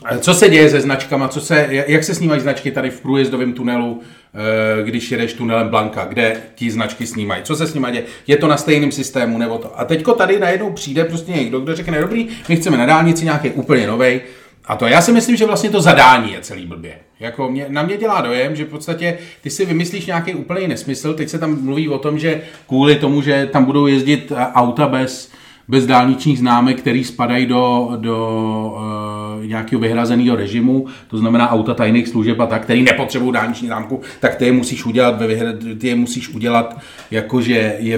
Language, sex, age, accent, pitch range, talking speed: Czech, male, 30-49, native, 115-155 Hz, 195 wpm